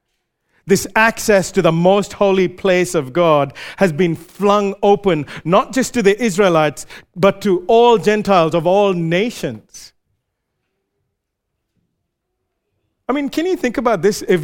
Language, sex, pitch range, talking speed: English, male, 145-205 Hz, 135 wpm